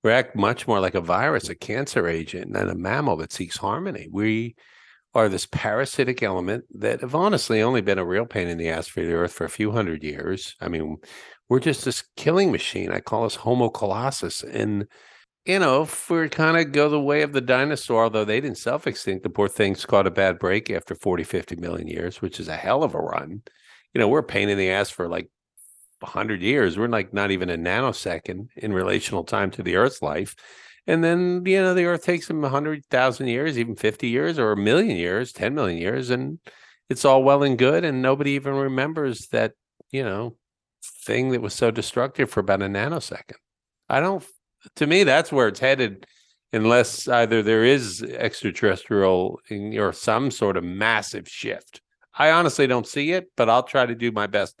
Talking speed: 205 wpm